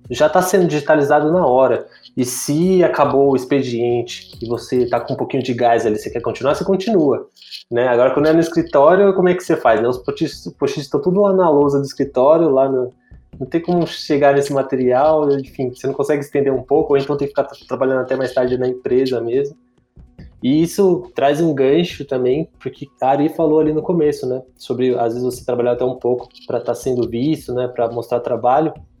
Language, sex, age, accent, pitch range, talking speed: Portuguese, male, 20-39, Brazilian, 125-155 Hz, 215 wpm